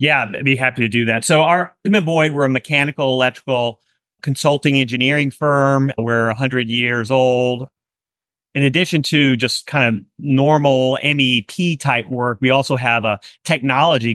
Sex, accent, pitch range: male, American, 125-155 Hz